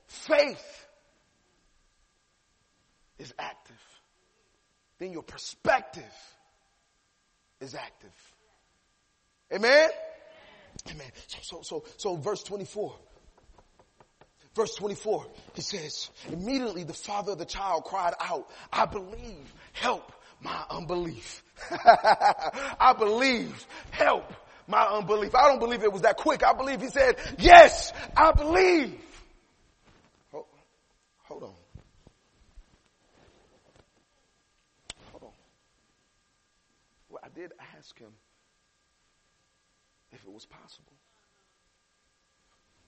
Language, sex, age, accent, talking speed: English, male, 30-49, American, 90 wpm